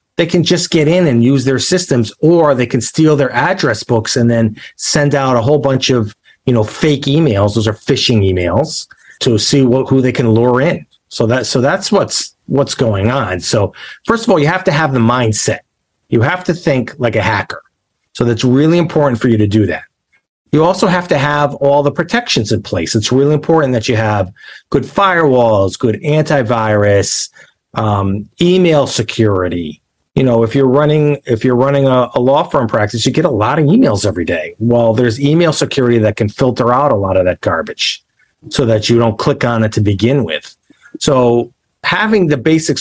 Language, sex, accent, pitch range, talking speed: English, male, American, 115-150 Hz, 205 wpm